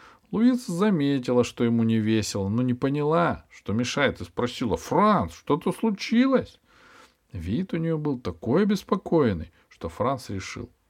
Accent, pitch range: native, 100-160 Hz